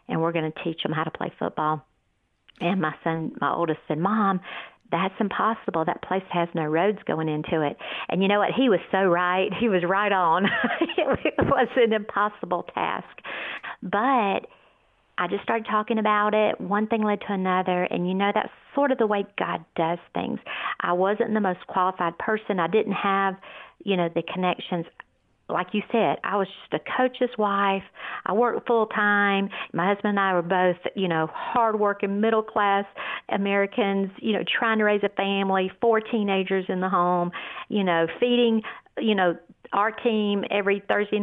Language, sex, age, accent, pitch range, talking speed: English, female, 50-69, American, 180-215 Hz, 180 wpm